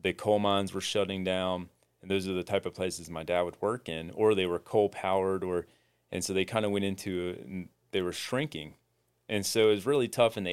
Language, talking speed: English, 240 wpm